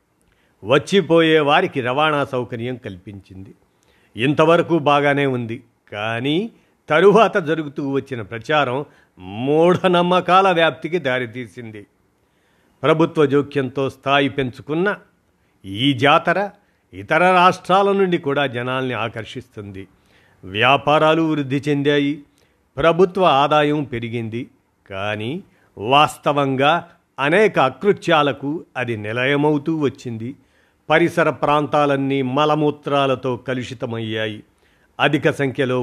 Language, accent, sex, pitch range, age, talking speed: Telugu, native, male, 125-160 Hz, 50-69, 75 wpm